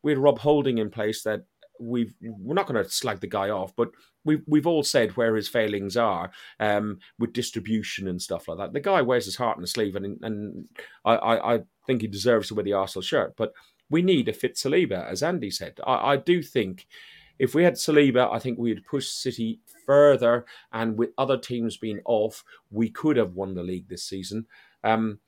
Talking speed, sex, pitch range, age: 220 wpm, male, 105-130 Hz, 30-49